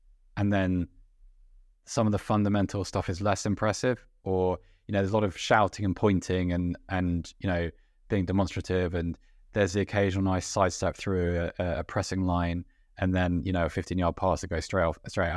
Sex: male